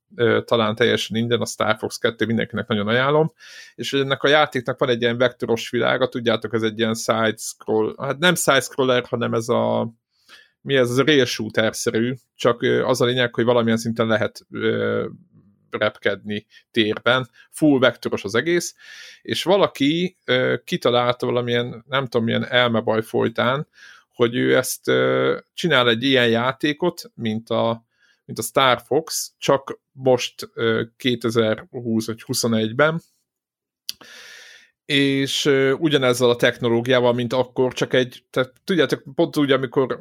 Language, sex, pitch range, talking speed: Hungarian, male, 115-135 Hz, 135 wpm